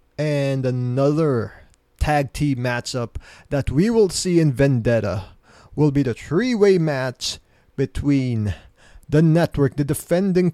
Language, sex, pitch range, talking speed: English, male, 120-150 Hz, 120 wpm